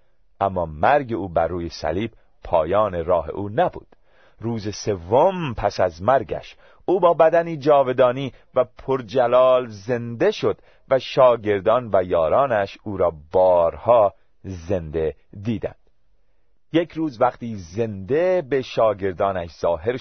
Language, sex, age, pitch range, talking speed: Persian, male, 40-59, 95-135 Hz, 115 wpm